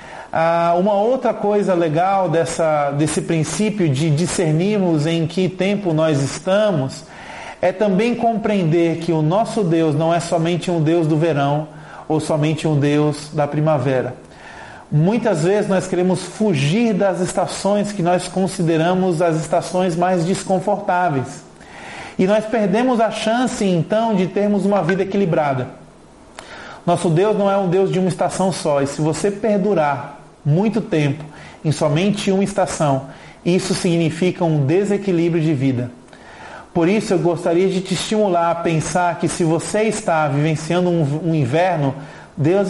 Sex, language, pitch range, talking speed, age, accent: male, Portuguese, 155-195 Hz, 140 wpm, 40-59, Brazilian